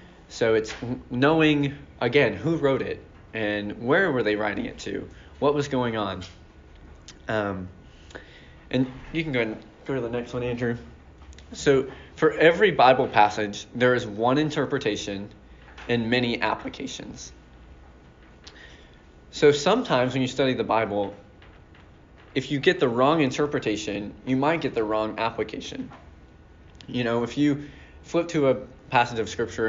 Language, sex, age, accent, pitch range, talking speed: English, male, 20-39, American, 100-130 Hz, 145 wpm